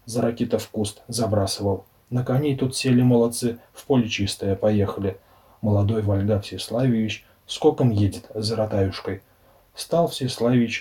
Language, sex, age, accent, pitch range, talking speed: Russian, male, 30-49, native, 100-130 Hz, 130 wpm